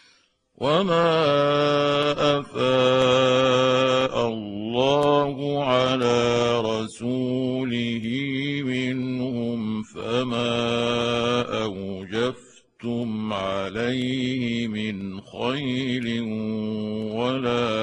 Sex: male